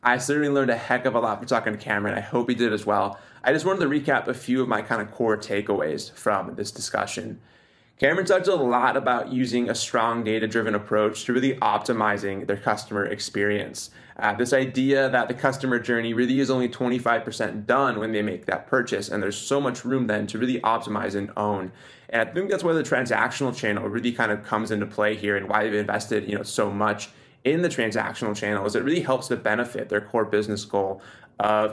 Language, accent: English, American